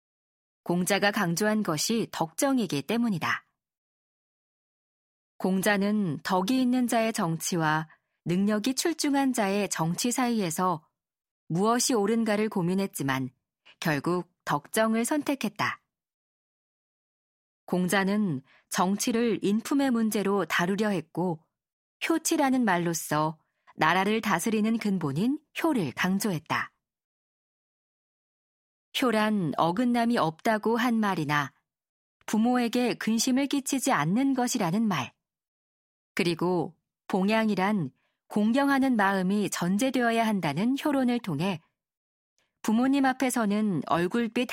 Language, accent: Korean, native